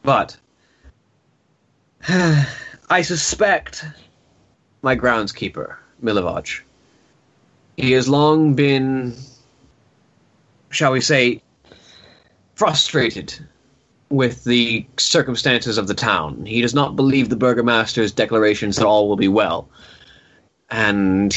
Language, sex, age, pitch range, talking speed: English, male, 20-39, 110-135 Hz, 95 wpm